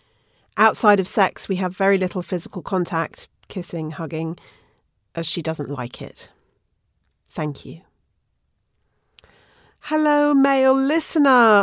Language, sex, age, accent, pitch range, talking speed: English, female, 40-59, British, 165-225 Hz, 110 wpm